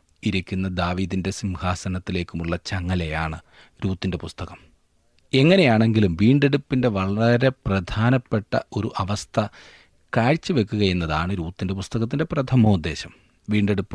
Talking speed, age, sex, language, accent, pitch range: 75 wpm, 40-59, male, Malayalam, native, 90-120 Hz